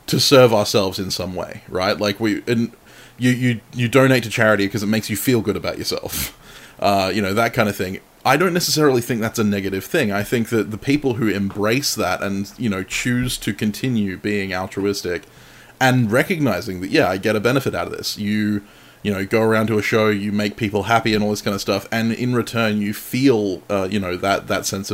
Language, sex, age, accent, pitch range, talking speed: English, male, 20-39, Australian, 100-120 Hz, 230 wpm